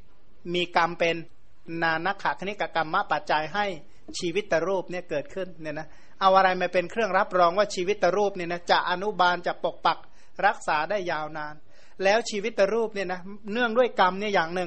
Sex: male